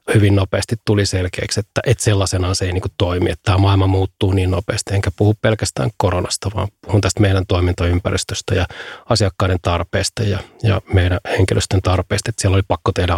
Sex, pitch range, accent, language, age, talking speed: male, 90-105 Hz, native, Finnish, 30-49, 180 wpm